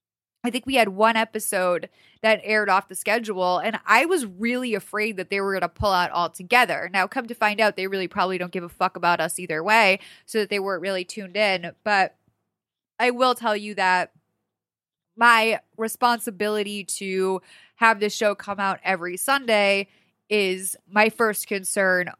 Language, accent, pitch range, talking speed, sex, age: English, American, 190-235 Hz, 180 wpm, female, 20-39